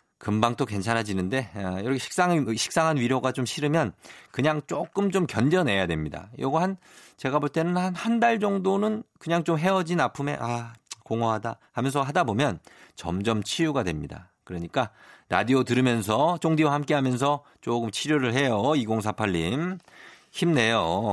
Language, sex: Korean, male